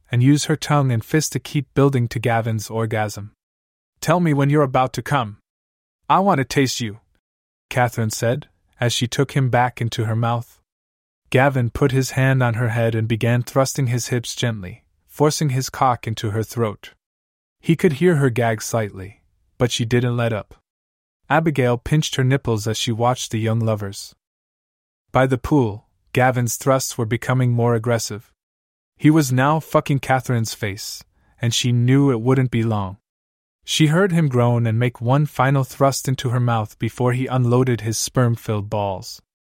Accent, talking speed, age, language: American, 175 wpm, 20-39, English